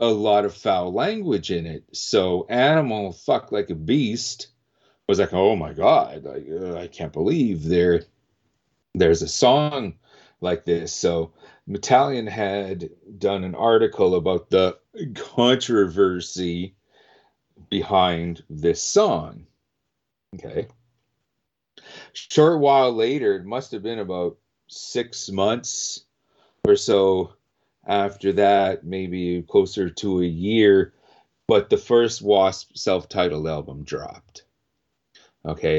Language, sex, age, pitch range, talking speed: English, male, 40-59, 85-110 Hz, 115 wpm